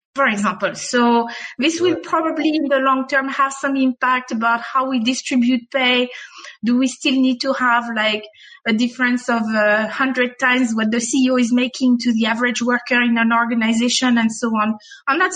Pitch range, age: 240-275 Hz, 30-49